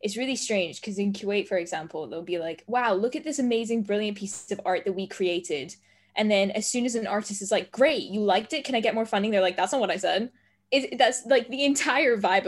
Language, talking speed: English, 260 wpm